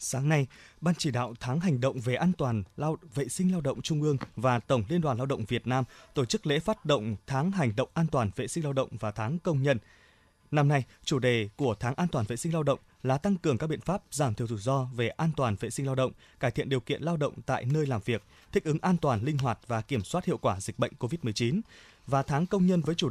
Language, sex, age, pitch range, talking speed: Vietnamese, male, 20-39, 125-165 Hz, 265 wpm